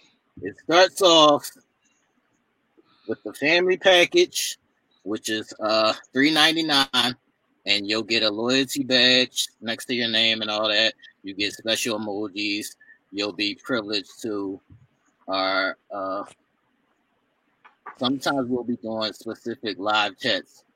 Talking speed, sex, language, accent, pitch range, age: 120 wpm, male, English, American, 105-140 Hz, 30-49